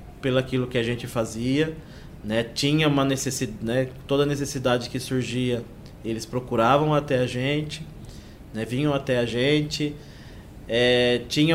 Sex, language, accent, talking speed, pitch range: male, Portuguese, Brazilian, 140 wpm, 115-140 Hz